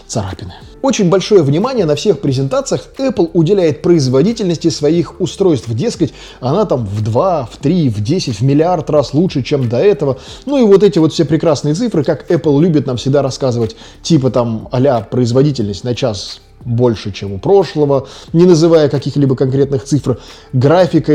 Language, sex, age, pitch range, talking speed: Russian, male, 20-39, 125-160 Hz, 165 wpm